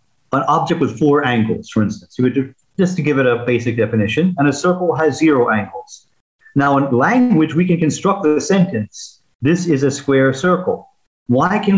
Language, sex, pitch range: English, male, 130-175 Hz